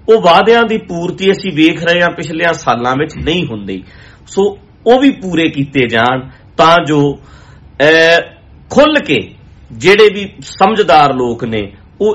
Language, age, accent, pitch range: English, 50-69, Indian, 135-185 Hz